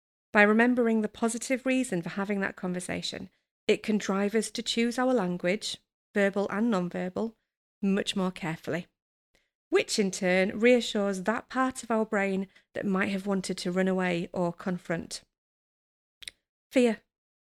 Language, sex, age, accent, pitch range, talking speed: English, female, 30-49, British, 185-220 Hz, 145 wpm